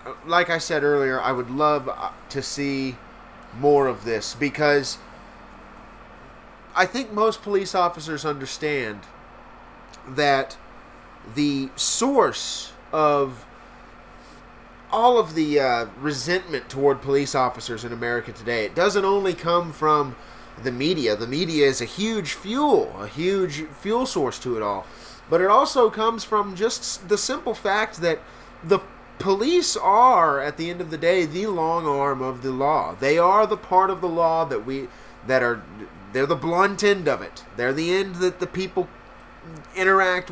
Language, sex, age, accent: English, male, 30-49, American